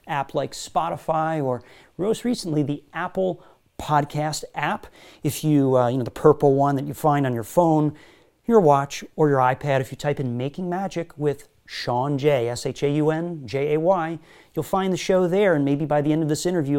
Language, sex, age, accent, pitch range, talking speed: English, male, 40-59, American, 130-170 Hz, 185 wpm